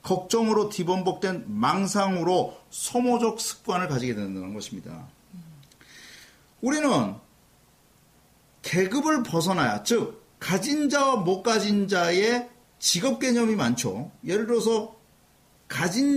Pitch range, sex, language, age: 165-245 Hz, male, Korean, 40-59